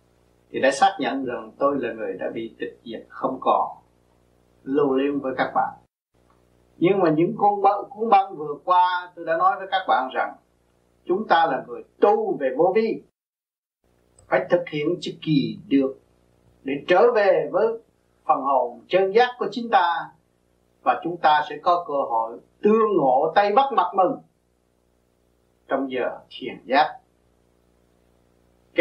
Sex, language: male, Vietnamese